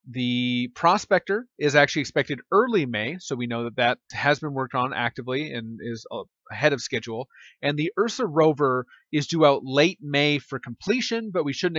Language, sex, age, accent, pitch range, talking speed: English, male, 30-49, American, 125-165 Hz, 185 wpm